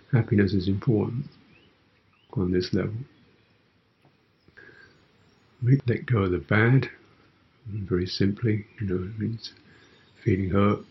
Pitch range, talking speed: 95-120 Hz, 105 wpm